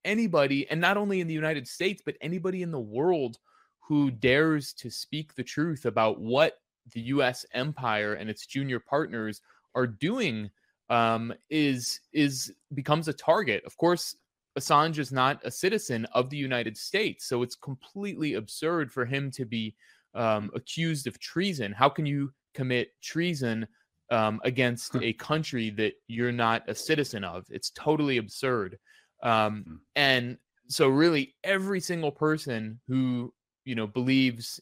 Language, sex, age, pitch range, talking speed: English, male, 20-39, 115-150 Hz, 155 wpm